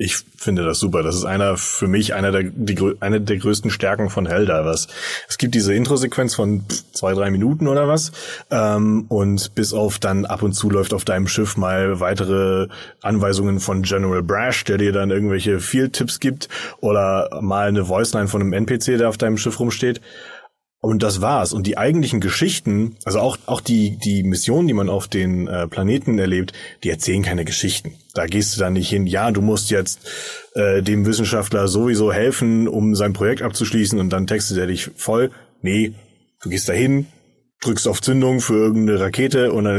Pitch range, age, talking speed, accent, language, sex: 100-115 Hz, 30-49, 180 wpm, German, German, male